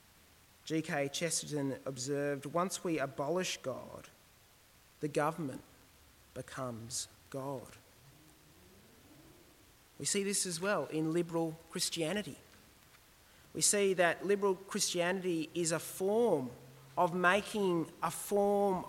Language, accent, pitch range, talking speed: English, Australian, 140-185 Hz, 100 wpm